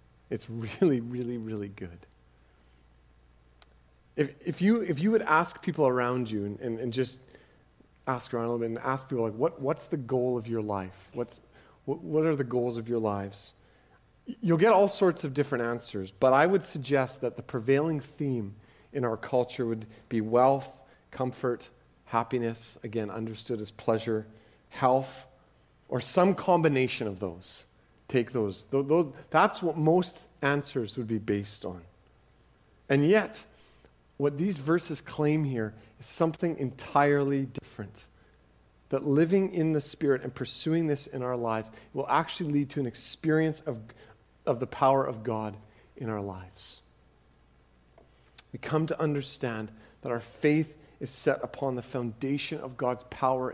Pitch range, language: 110-145 Hz, English